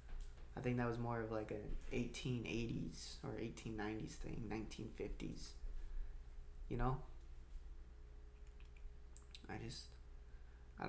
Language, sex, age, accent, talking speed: English, male, 20-39, American, 100 wpm